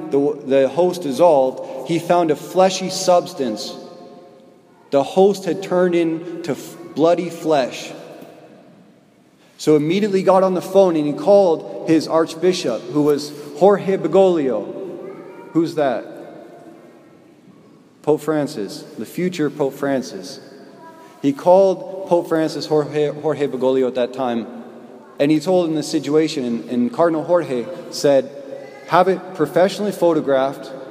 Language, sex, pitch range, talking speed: English, male, 140-180 Hz, 125 wpm